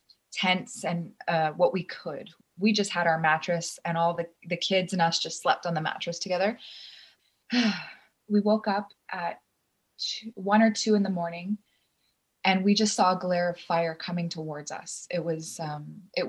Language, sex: English, female